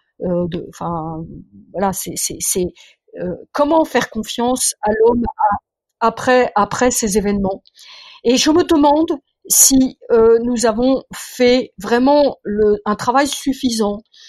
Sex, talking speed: female, 125 wpm